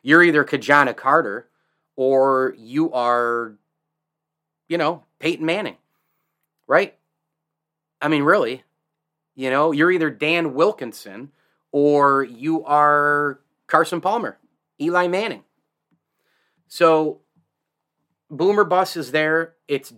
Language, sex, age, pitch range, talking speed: English, male, 30-49, 125-155 Hz, 100 wpm